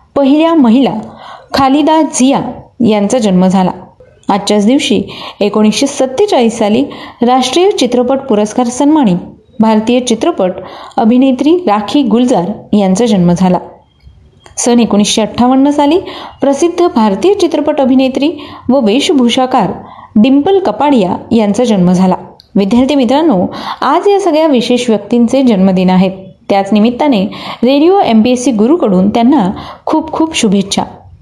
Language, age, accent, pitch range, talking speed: Marathi, 30-49, native, 205-280 Hz, 115 wpm